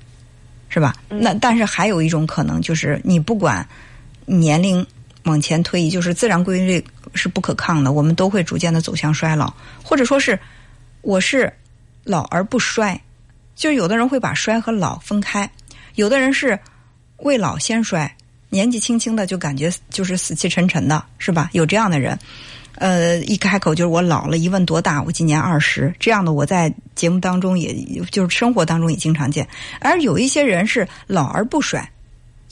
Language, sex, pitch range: Chinese, female, 155-215 Hz